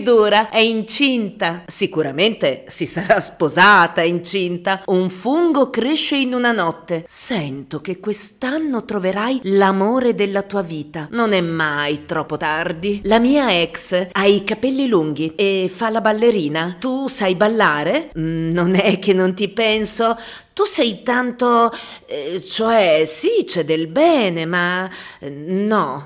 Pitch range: 180-265 Hz